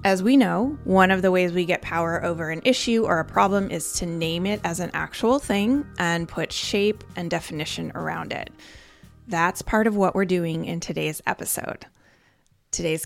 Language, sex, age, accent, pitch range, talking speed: English, female, 20-39, American, 170-205 Hz, 190 wpm